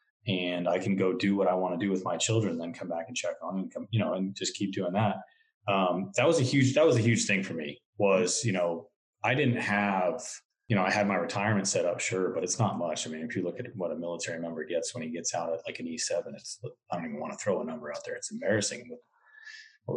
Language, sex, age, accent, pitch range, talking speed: English, male, 30-49, American, 100-140 Hz, 275 wpm